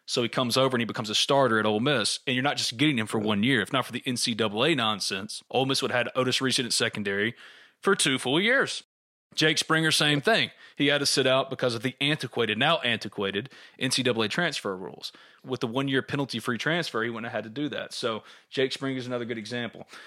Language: English